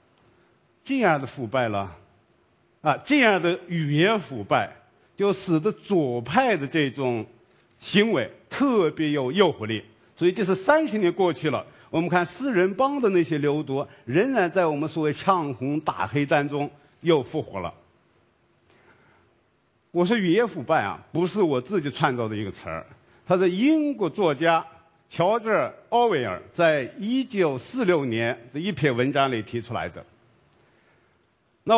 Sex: male